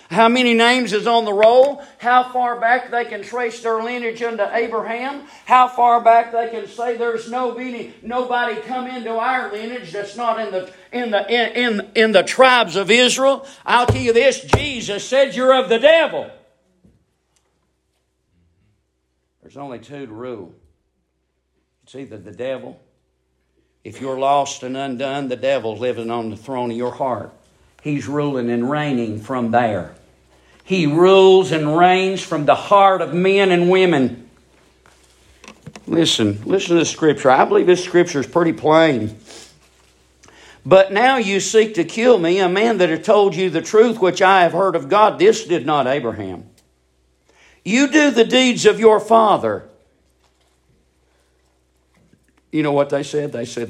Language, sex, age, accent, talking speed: English, male, 50-69, American, 160 wpm